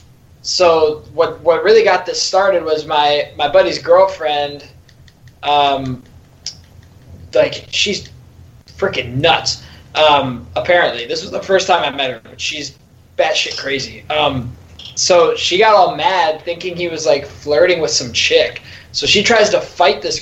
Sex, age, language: male, 20-39, English